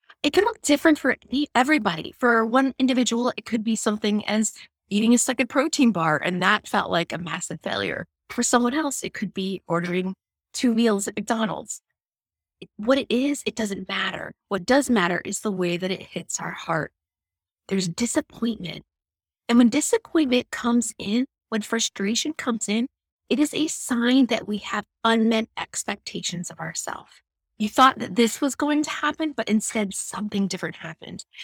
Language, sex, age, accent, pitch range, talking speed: English, female, 20-39, American, 185-250 Hz, 170 wpm